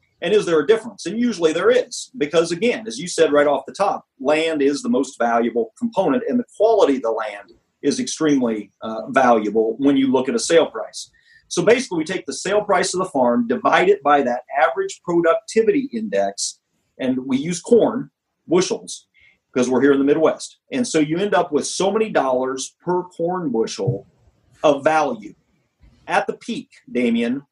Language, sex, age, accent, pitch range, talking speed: English, male, 40-59, American, 150-190 Hz, 190 wpm